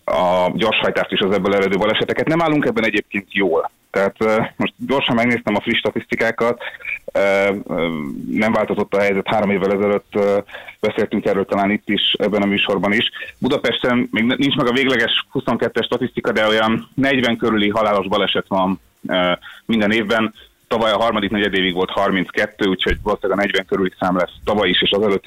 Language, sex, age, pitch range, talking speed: Hungarian, male, 30-49, 100-120 Hz, 170 wpm